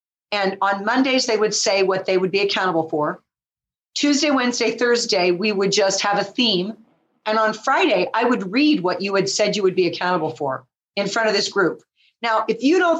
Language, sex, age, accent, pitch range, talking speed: English, female, 40-59, American, 185-270 Hz, 210 wpm